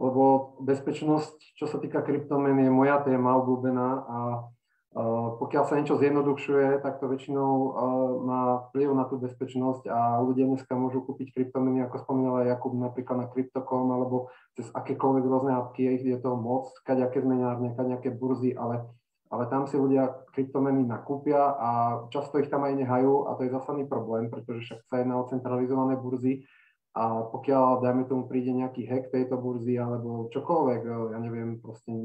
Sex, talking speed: male, 170 wpm